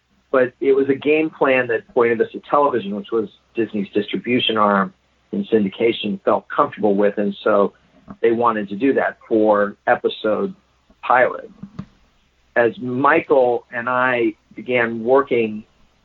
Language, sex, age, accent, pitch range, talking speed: English, male, 50-69, American, 105-135 Hz, 140 wpm